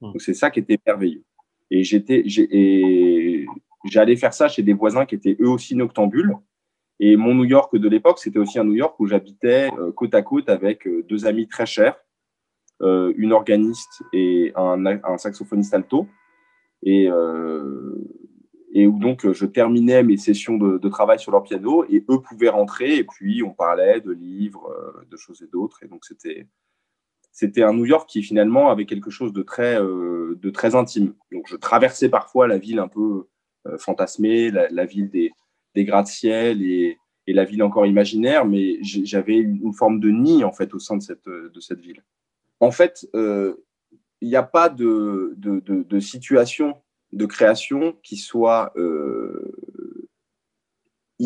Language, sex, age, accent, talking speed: French, male, 20-39, French, 175 wpm